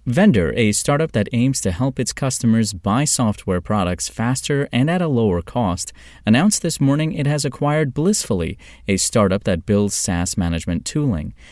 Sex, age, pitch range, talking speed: male, 30-49, 95-130 Hz, 165 wpm